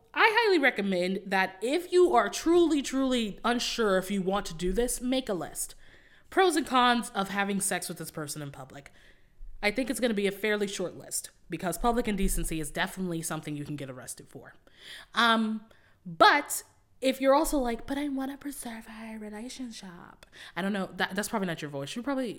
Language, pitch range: English, 165-245 Hz